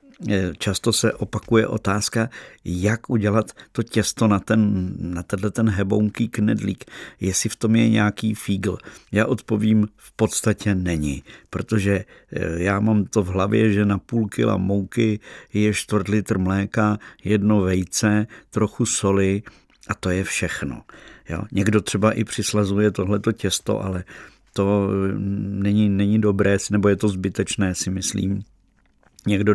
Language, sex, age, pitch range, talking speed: Czech, male, 50-69, 95-110 Hz, 135 wpm